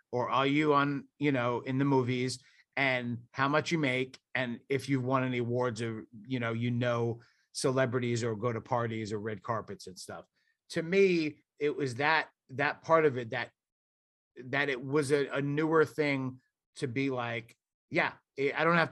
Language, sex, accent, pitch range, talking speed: English, male, American, 115-140 Hz, 185 wpm